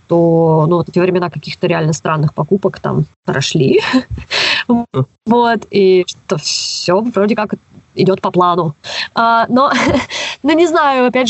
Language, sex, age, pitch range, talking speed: Russian, female, 20-39, 175-210 Hz, 110 wpm